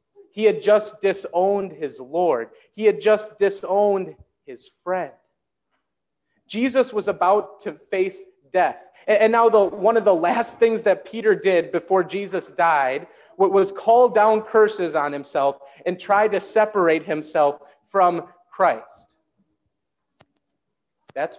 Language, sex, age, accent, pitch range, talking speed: English, male, 30-49, American, 160-225 Hz, 130 wpm